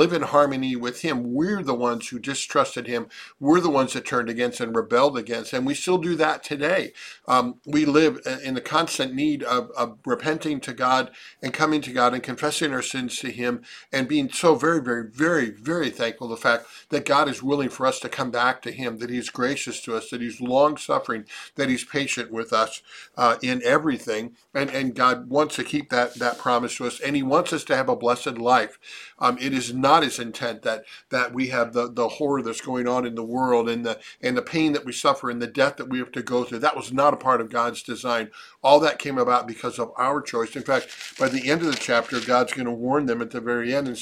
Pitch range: 120-145 Hz